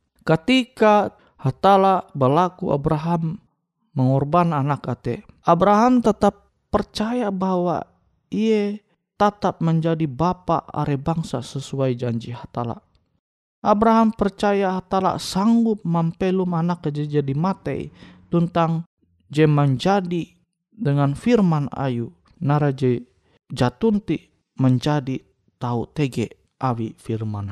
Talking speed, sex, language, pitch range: 90 wpm, male, Indonesian, 130-180 Hz